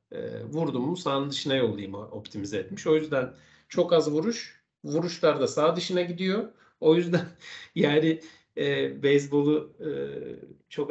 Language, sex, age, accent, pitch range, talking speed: Turkish, male, 50-69, native, 130-170 Hz, 140 wpm